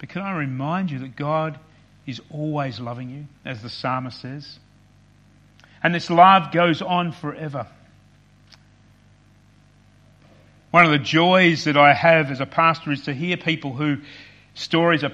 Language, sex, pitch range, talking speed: English, male, 125-170 Hz, 150 wpm